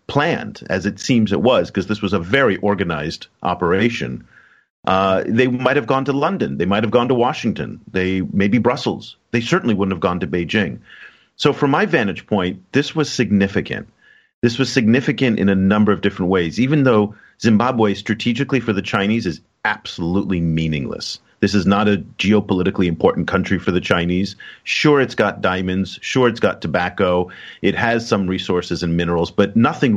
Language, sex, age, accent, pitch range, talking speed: English, male, 40-59, American, 95-120 Hz, 180 wpm